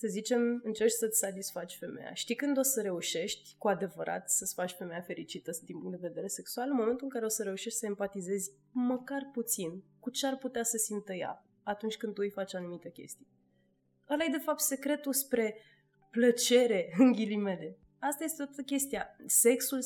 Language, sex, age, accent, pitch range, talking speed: Romanian, female, 20-39, native, 190-235 Hz, 180 wpm